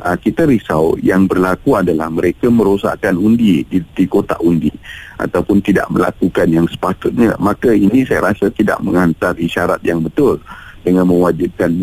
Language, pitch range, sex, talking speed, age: Malay, 85-100 Hz, male, 140 wpm, 40-59